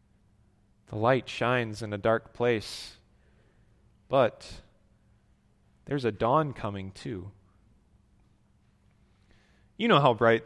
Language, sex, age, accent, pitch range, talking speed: English, male, 30-49, American, 110-155 Hz, 100 wpm